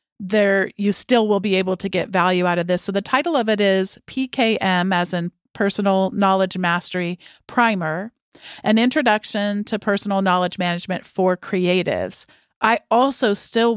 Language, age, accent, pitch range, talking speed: English, 40-59, American, 185-225 Hz, 155 wpm